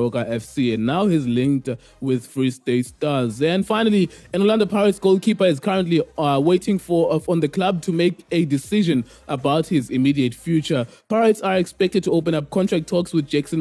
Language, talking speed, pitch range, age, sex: English, 185 wpm, 135-170 Hz, 20-39, male